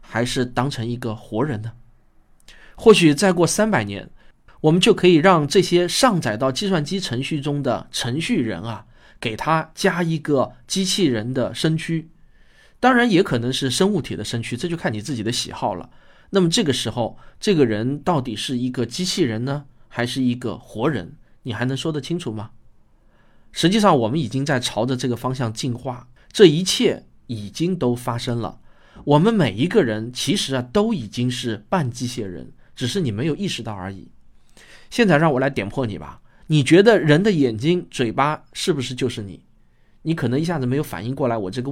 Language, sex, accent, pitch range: Chinese, male, native, 115-160 Hz